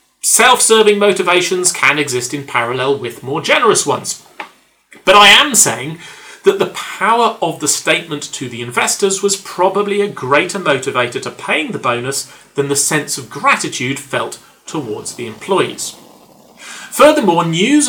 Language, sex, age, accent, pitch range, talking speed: English, male, 40-59, British, 140-225 Hz, 145 wpm